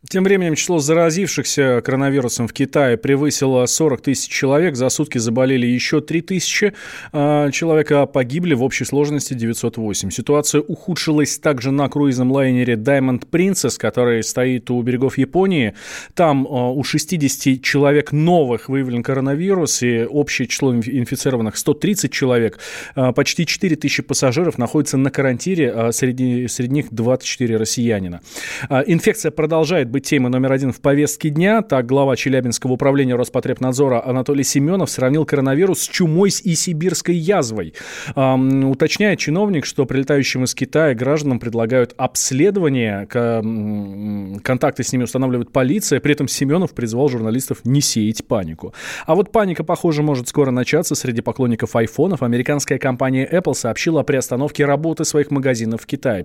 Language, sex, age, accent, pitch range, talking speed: Russian, male, 20-39, native, 125-155 Hz, 140 wpm